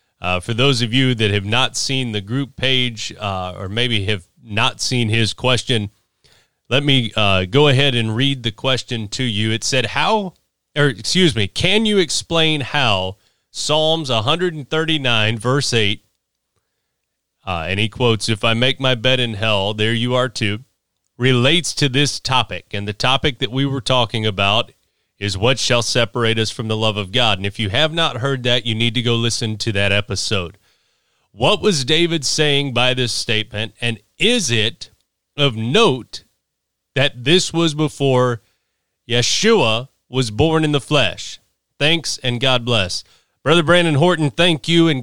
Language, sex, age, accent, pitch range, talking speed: English, male, 30-49, American, 110-145 Hz, 170 wpm